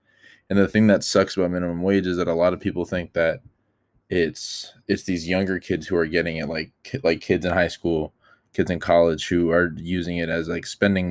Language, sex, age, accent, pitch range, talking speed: English, male, 20-39, American, 85-100 Hz, 225 wpm